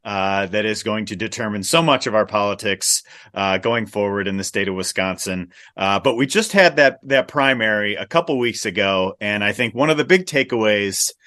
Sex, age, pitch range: male, 30-49, 95-125 Hz